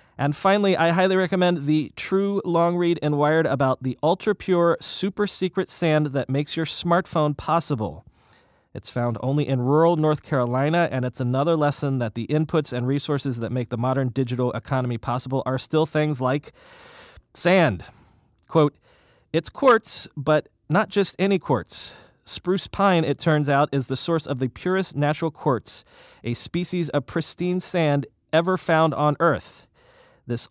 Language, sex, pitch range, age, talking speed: English, male, 130-165 Hz, 30-49, 155 wpm